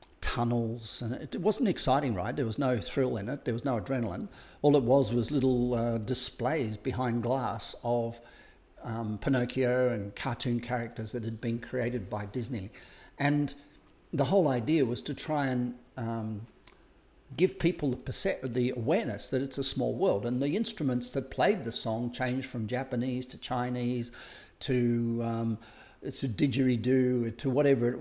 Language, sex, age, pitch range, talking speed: English, male, 60-79, 120-135 Hz, 165 wpm